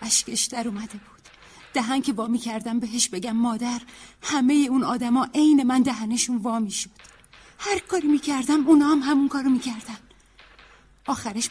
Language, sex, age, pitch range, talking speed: Persian, female, 40-59, 235-290 Hz, 155 wpm